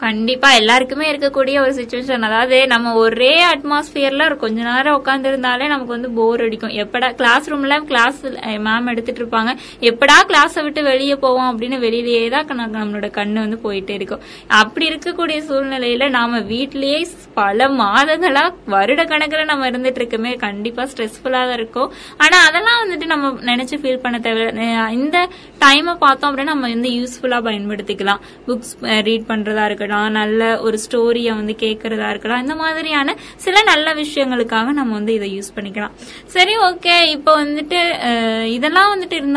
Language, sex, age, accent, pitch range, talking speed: Tamil, female, 20-39, native, 230-300 Hz, 115 wpm